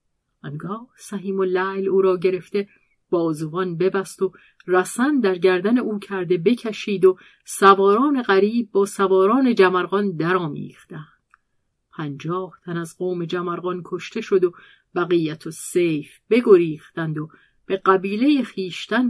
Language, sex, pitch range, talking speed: Persian, female, 165-205 Hz, 125 wpm